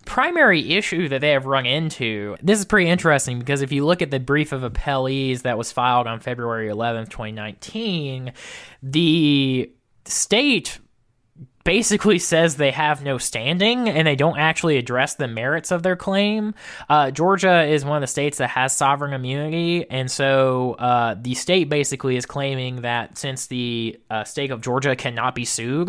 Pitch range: 120-150 Hz